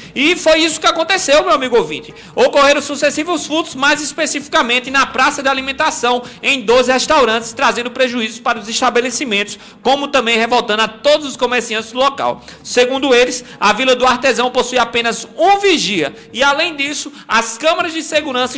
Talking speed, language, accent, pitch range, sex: 165 wpm, Portuguese, Brazilian, 230-290 Hz, male